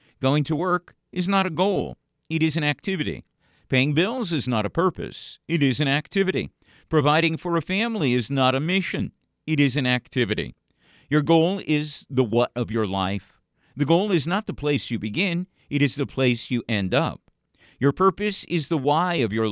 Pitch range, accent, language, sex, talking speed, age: 125-170 Hz, American, English, male, 195 wpm, 50-69